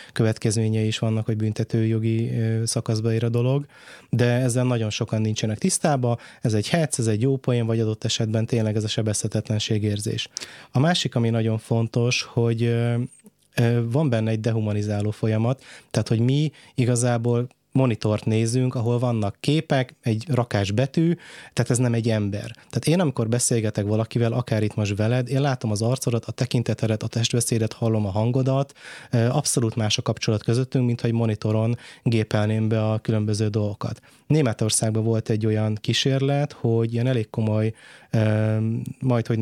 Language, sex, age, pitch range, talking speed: Hungarian, male, 20-39, 110-125 Hz, 150 wpm